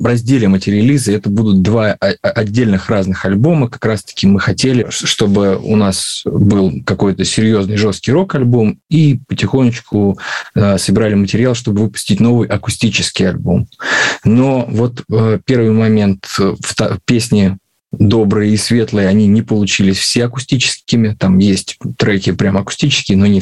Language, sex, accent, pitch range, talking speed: Russian, male, native, 100-120 Hz, 135 wpm